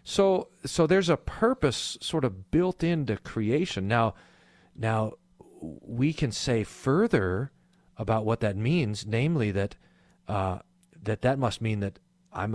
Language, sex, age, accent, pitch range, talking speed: English, male, 40-59, American, 95-130 Hz, 140 wpm